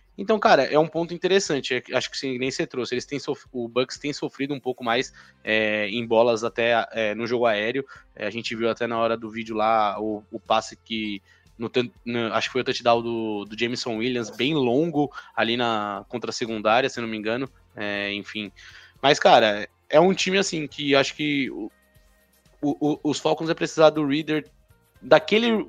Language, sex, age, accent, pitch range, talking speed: Portuguese, male, 20-39, Brazilian, 115-150 Hz, 170 wpm